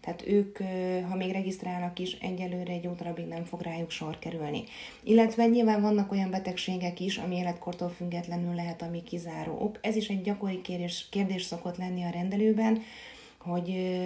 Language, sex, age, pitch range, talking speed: Hungarian, female, 30-49, 170-195 Hz, 160 wpm